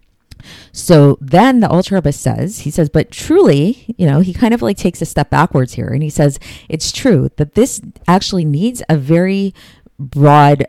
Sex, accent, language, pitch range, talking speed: female, American, English, 135-180 Hz, 185 wpm